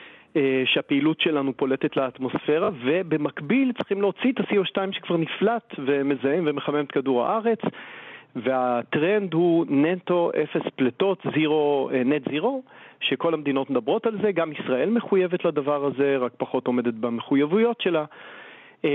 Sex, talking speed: male, 120 wpm